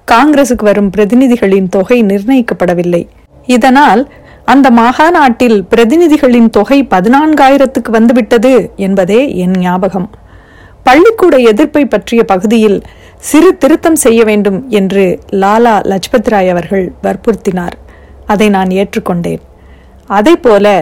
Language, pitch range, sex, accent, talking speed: Tamil, 195-260 Hz, female, native, 90 wpm